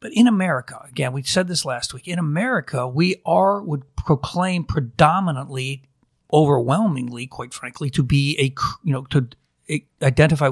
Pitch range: 125-160 Hz